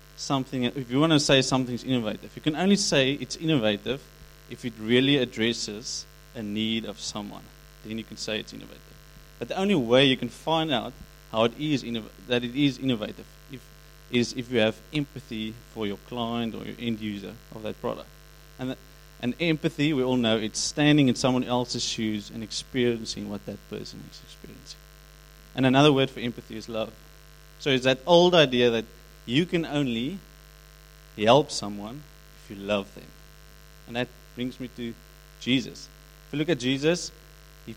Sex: male